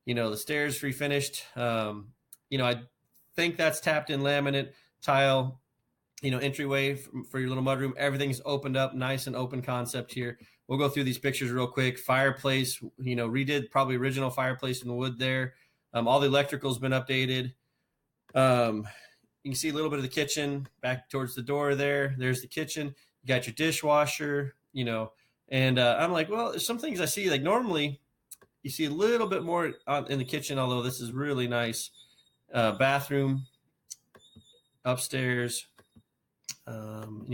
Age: 30-49